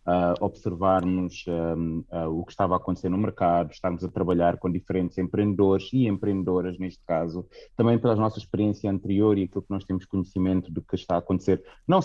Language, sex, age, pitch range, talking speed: Portuguese, male, 20-39, 90-105 Hz, 190 wpm